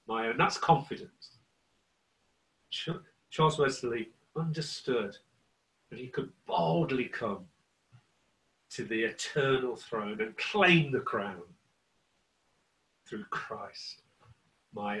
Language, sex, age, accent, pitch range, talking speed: English, male, 40-59, British, 120-165 Hz, 90 wpm